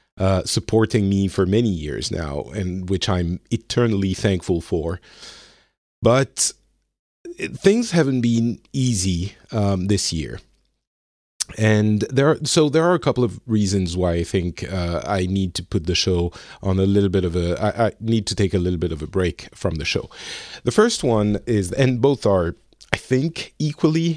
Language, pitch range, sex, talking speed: English, 95-125 Hz, male, 175 wpm